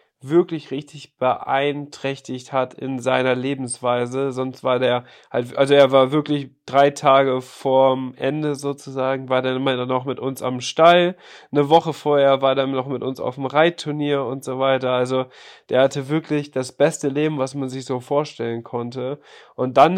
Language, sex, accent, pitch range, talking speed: German, male, German, 130-150 Hz, 170 wpm